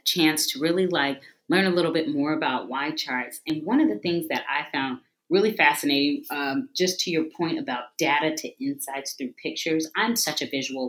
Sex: female